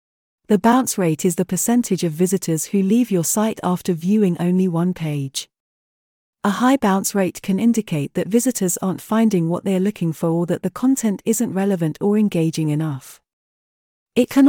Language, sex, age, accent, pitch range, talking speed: English, female, 40-59, British, 165-220 Hz, 175 wpm